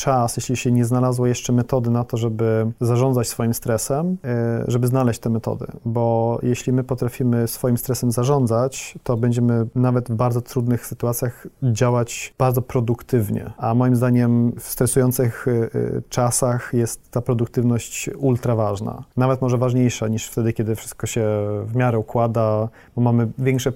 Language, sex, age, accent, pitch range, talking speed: Polish, male, 40-59, native, 115-125 Hz, 150 wpm